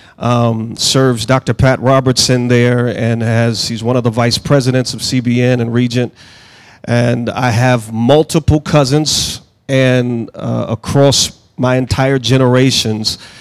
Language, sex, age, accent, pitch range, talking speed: English, male, 40-59, American, 120-150 Hz, 130 wpm